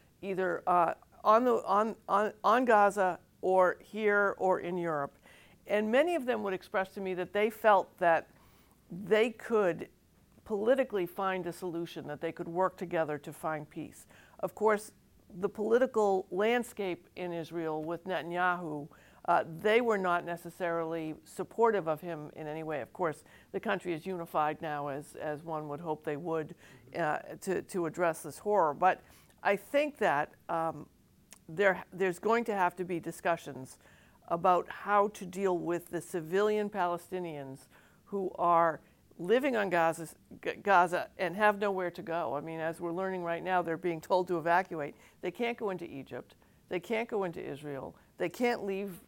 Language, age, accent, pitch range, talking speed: English, 50-69, American, 165-200 Hz, 170 wpm